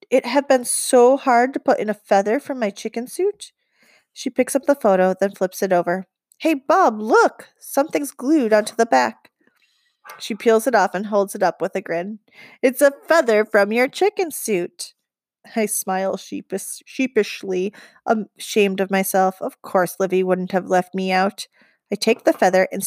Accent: American